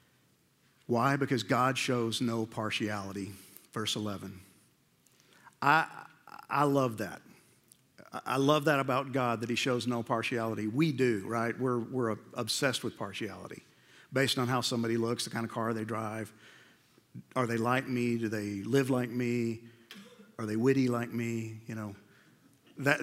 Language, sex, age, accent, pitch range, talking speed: English, male, 50-69, American, 115-140 Hz, 150 wpm